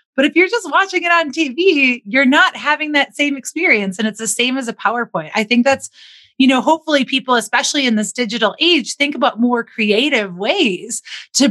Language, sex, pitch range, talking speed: English, female, 215-285 Hz, 205 wpm